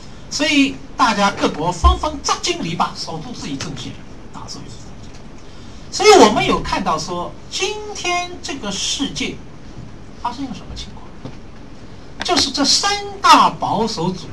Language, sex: Chinese, male